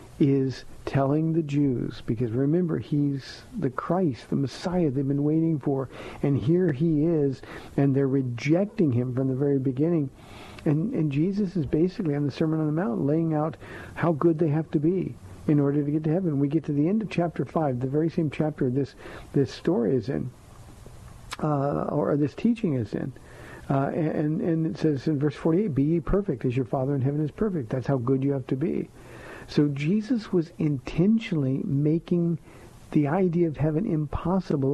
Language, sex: English, male